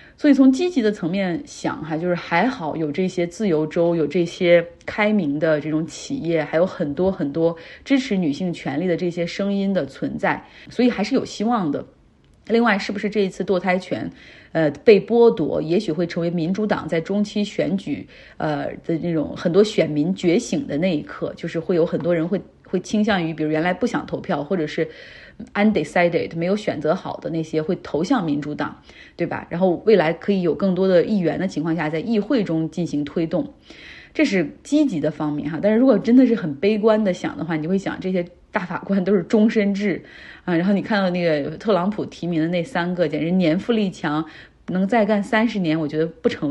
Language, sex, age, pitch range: Chinese, female, 30-49, 165-210 Hz